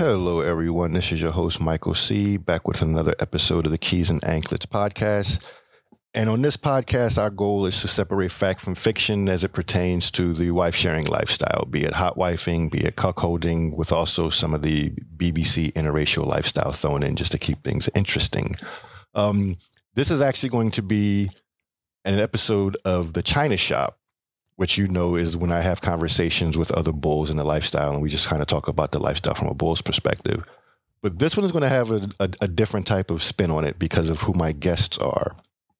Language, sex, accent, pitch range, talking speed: English, male, American, 85-100 Hz, 205 wpm